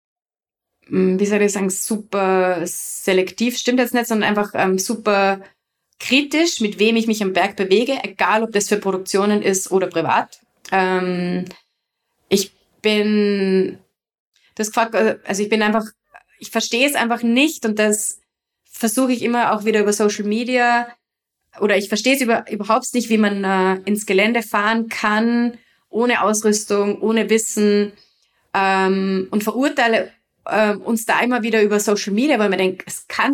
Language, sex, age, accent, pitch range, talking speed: German, female, 20-39, German, 205-235 Hz, 150 wpm